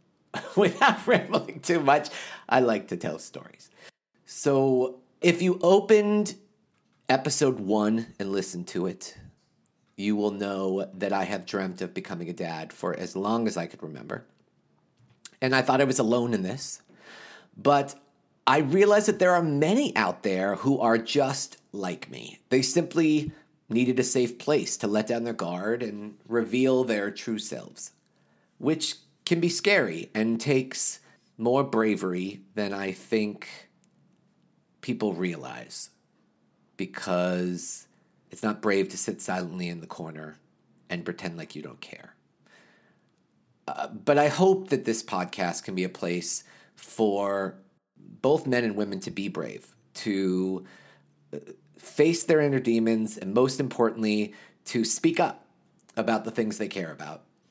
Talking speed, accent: 145 wpm, American